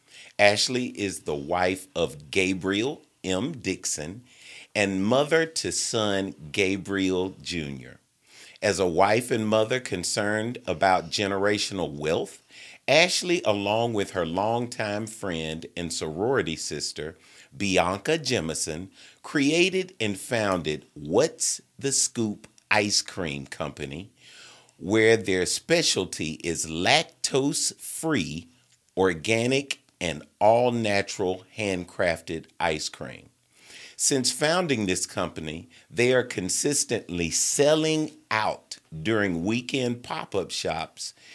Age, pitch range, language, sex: 40-59, 90-125 Hz, English, male